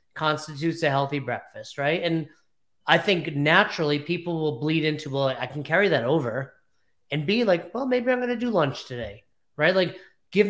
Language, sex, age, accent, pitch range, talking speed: English, male, 30-49, American, 145-185 Hz, 190 wpm